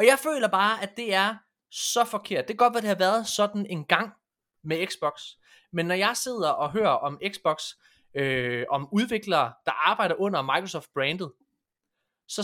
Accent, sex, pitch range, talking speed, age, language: native, male, 155-210 Hz, 185 wpm, 20-39, Danish